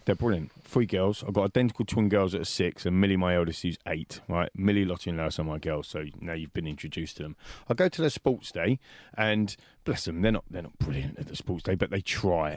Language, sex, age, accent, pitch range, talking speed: English, male, 30-49, British, 95-150 Hz, 250 wpm